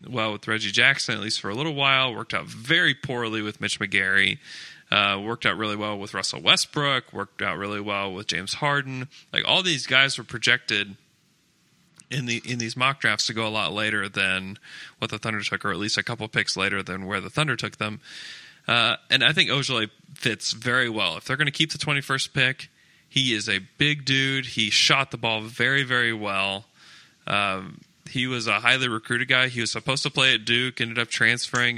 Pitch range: 105-130 Hz